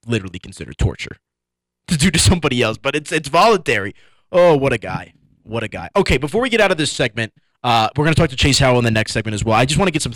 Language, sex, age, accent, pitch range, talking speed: English, male, 20-39, American, 105-135 Hz, 280 wpm